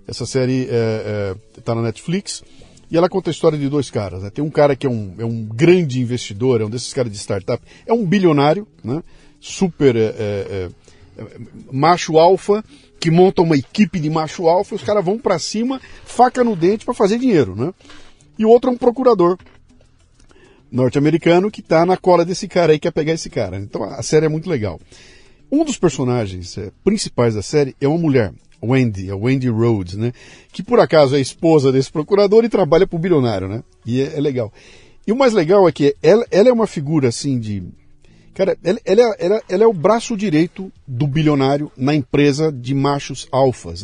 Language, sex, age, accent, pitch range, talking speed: Portuguese, male, 50-69, Brazilian, 125-185 Hz, 195 wpm